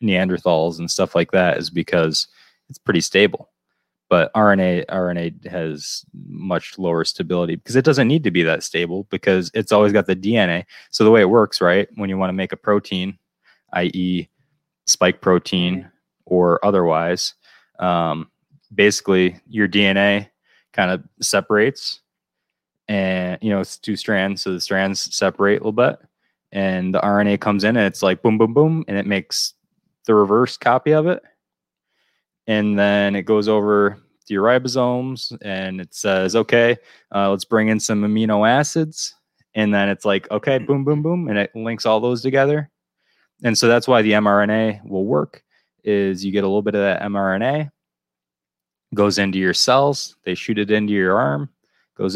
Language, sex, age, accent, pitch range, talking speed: English, male, 20-39, American, 95-110 Hz, 170 wpm